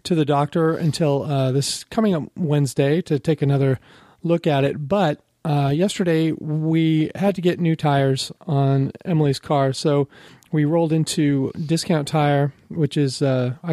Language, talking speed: English, 155 wpm